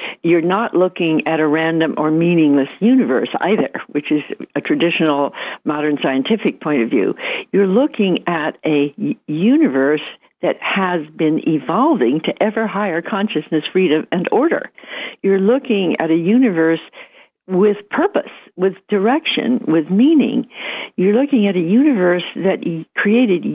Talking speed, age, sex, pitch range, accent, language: 135 wpm, 60-79, female, 165-240 Hz, American, English